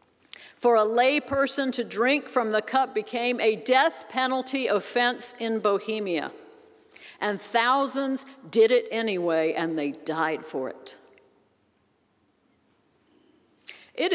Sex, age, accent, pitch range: female, 60-79, American, 195-280 Hz